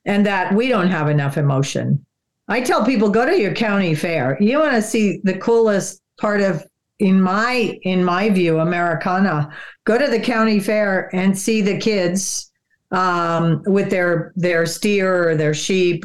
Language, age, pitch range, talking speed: English, 50-69, 160-205 Hz, 170 wpm